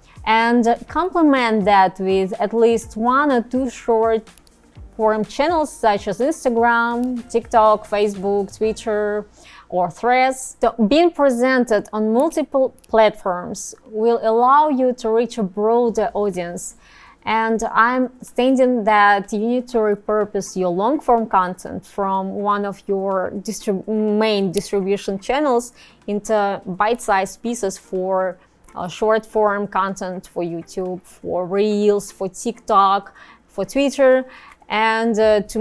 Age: 20-39